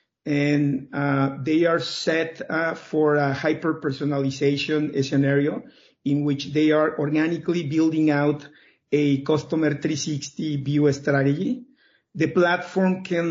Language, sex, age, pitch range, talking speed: English, male, 50-69, 145-165 Hz, 115 wpm